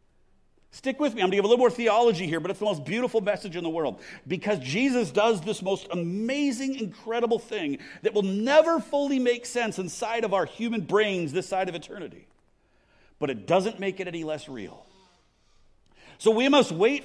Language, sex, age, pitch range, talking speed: English, male, 50-69, 160-225 Hz, 195 wpm